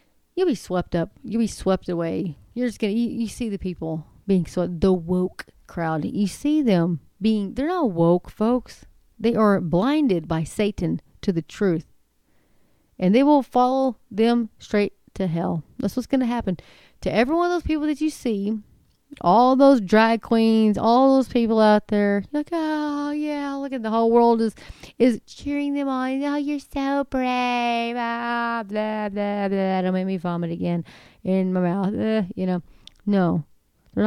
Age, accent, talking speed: 30-49, American, 180 wpm